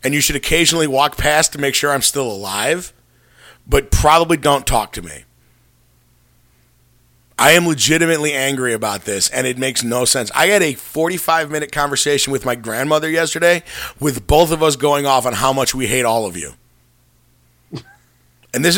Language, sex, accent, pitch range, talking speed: English, male, American, 130-160 Hz, 175 wpm